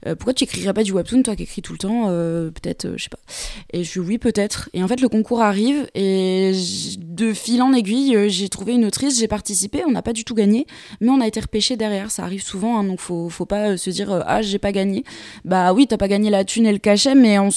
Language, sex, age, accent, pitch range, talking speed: French, female, 20-39, French, 190-230 Hz, 270 wpm